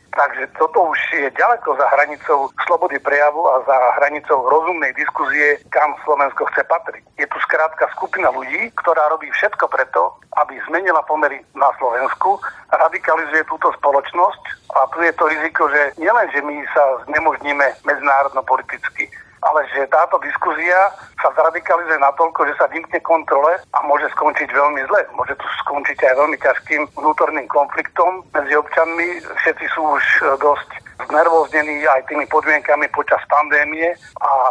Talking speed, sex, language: 145 wpm, male, Slovak